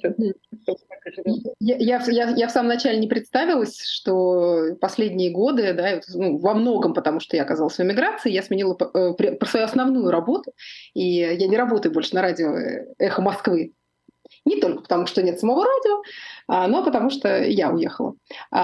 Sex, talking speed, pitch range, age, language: female, 145 wpm, 185-255 Hz, 30-49, Russian